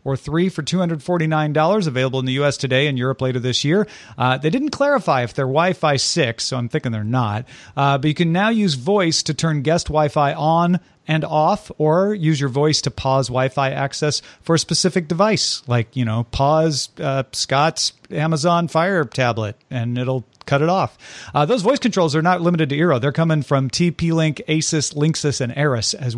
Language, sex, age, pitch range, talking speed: English, male, 40-59, 135-175 Hz, 195 wpm